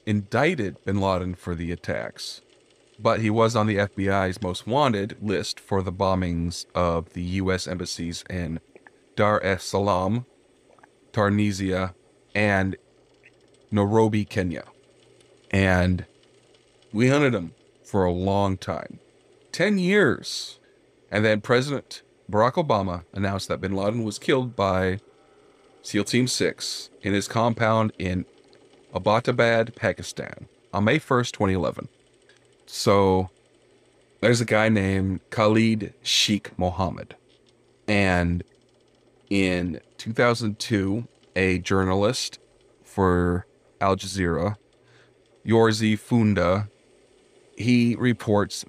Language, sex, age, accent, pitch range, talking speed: English, male, 30-49, American, 90-110 Hz, 105 wpm